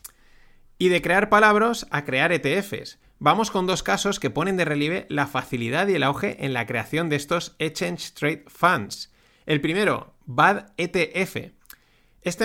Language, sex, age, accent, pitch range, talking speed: Spanish, male, 30-49, Spanish, 125-175 Hz, 160 wpm